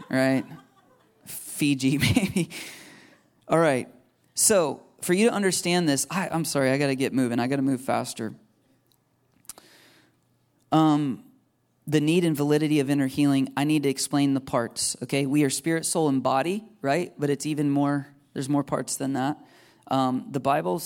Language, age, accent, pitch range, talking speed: English, 30-49, American, 135-160 Hz, 165 wpm